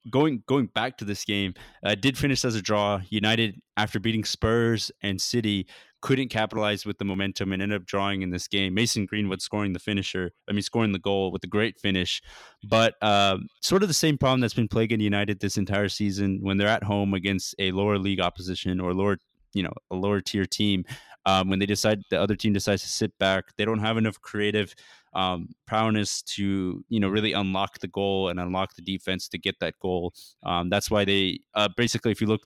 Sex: male